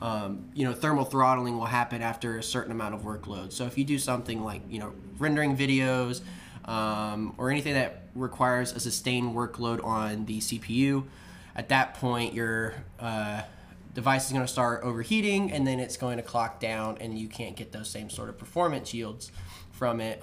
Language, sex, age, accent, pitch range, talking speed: English, male, 10-29, American, 110-130 Hz, 190 wpm